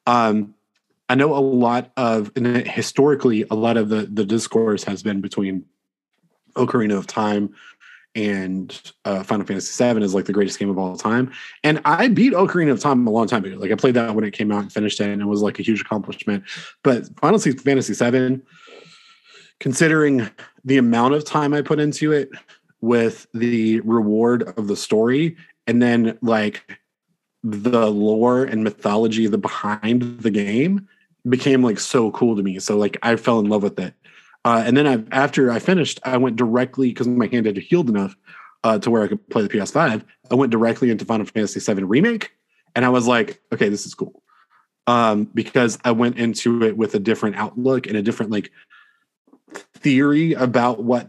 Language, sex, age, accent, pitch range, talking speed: English, male, 30-49, American, 110-135 Hz, 190 wpm